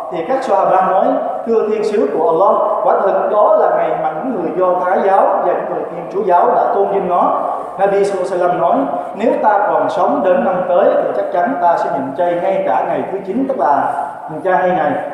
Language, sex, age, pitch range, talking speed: Vietnamese, male, 20-39, 170-210 Hz, 220 wpm